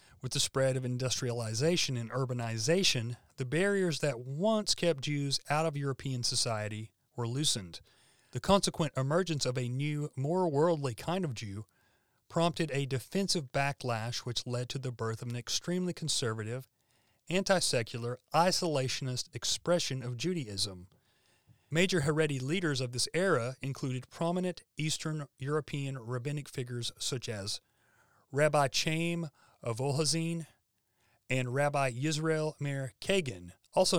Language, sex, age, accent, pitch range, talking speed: English, male, 40-59, American, 120-155 Hz, 125 wpm